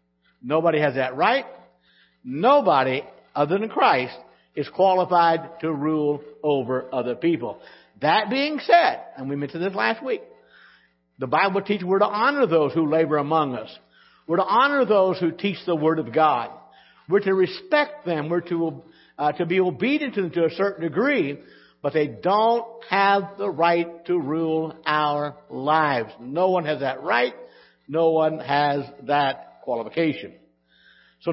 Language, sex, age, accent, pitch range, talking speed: English, male, 60-79, American, 125-200 Hz, 155 wpm